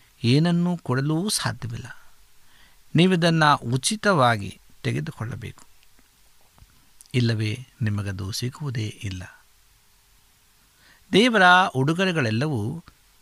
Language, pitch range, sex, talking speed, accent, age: Kannada, 115-150 Hz, male, 55 wpm, native, 50-69